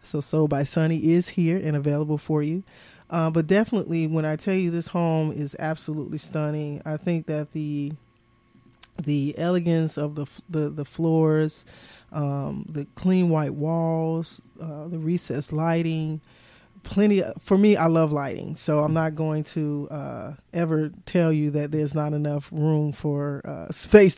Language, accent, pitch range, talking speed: English, American, 150-165 Hz, 165 wpm